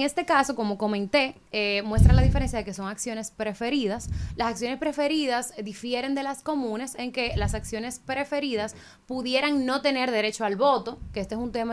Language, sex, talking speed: Spanish, female, 185 wpm